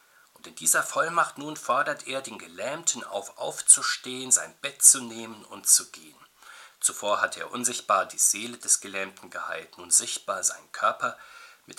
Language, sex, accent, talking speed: German, male, German, 165 wpm